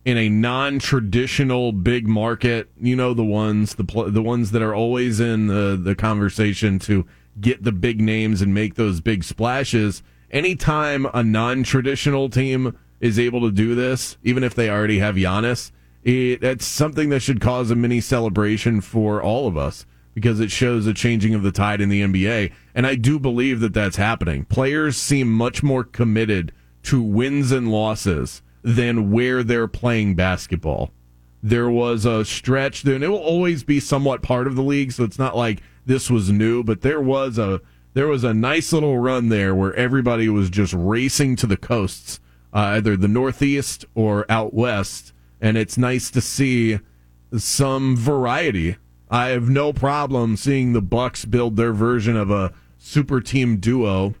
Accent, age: American, 30-49